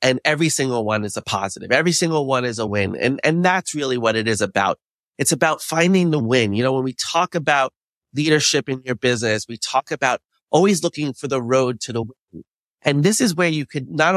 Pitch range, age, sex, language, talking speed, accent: 125-170 Hz, 30-49, male, English, 230 wpm, American